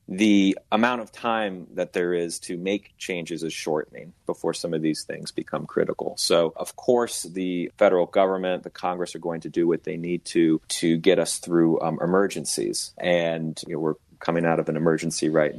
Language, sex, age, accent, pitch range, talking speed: English, male, 40-59, American, 80-90 Hz, 190 wpm